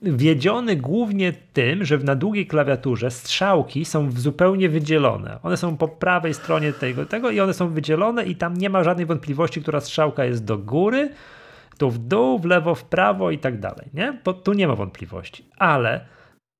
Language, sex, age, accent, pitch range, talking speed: Polish, male, 40-59, native, 120-165 Hz, 180 wpm